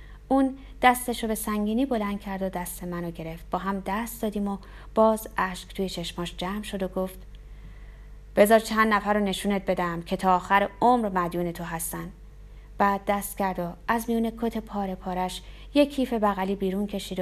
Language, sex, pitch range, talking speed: Persian, female, 180-230 Hz, 180 wpm